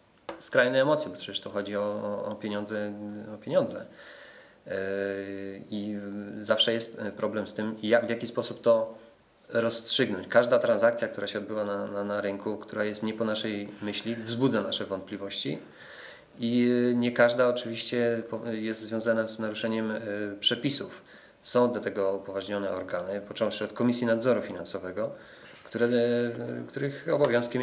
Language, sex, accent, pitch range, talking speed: Polish, male, native, 105-120 Hz, 140 wpm